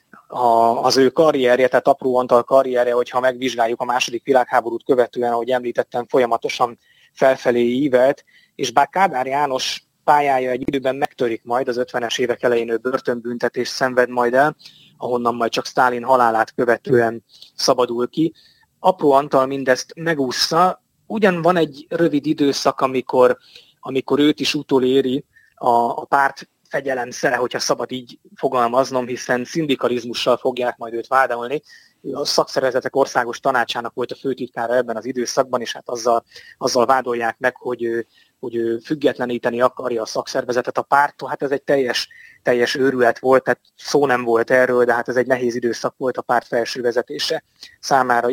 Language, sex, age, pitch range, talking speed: Hungarian, male, 20-39, 120-135 Hz, 155 wpm